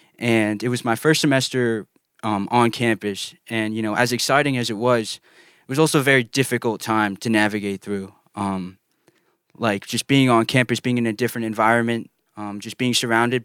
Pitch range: 110-130 Hz